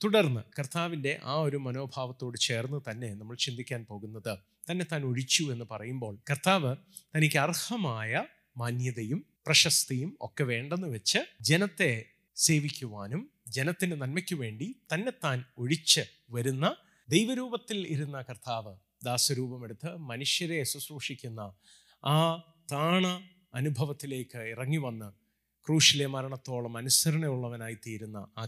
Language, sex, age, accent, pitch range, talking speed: Malayalam, male, 30-49, native, 125-165 Hz, 100 wpm